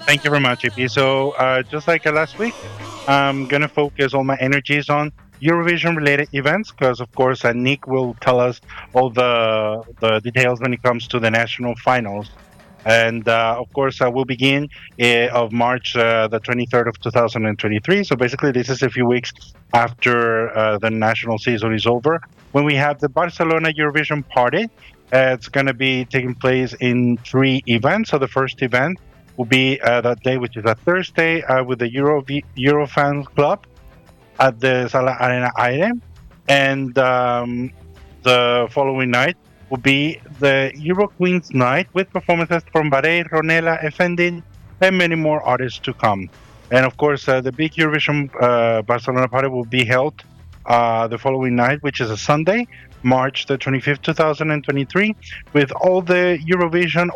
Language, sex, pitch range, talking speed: English, male, 120-150 Hz, 175 wpm